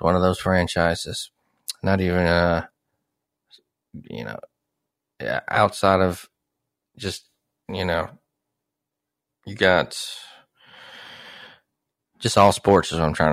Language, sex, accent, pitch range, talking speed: English, male, American, 80-105 Hz, 110 wpm